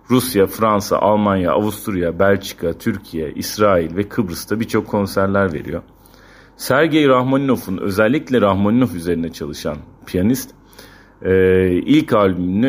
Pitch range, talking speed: 90-105 Hz, 100 wpm